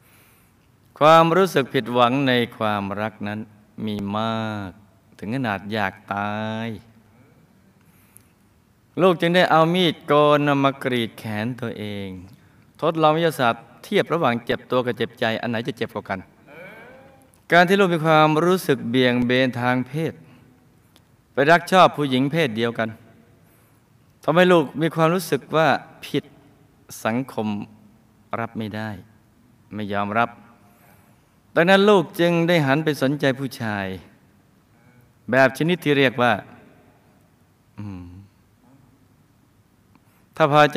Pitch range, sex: 110-150 Hz, male